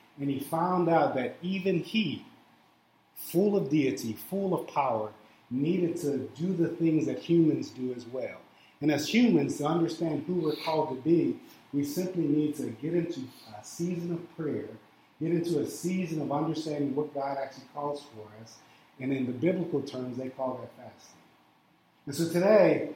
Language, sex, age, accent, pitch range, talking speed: English, male, 30-49, American, 135-165 Hz, 175 wpm